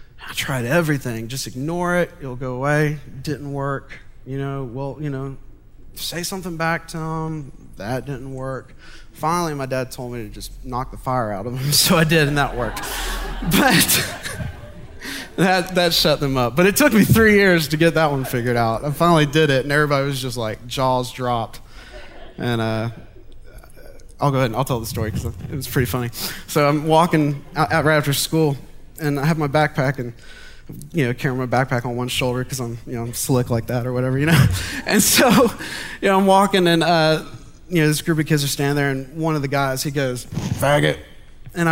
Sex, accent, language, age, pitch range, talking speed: male, American, English, 20-39, 130-175 Hz, 210 wpm